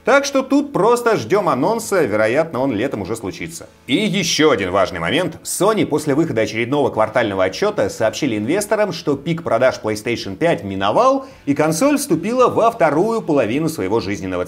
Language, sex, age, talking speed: Russian, male, 30-49, 160 wpm